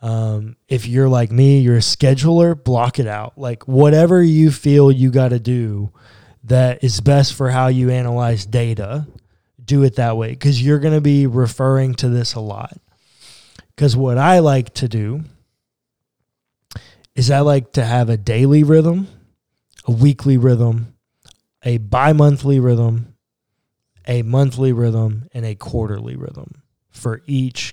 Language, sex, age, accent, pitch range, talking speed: English, male, 20-39, American, 115-140 Hz, 150 wpm